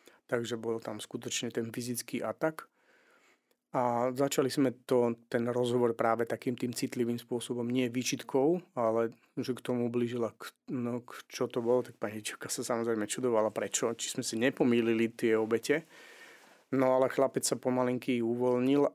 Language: Slovak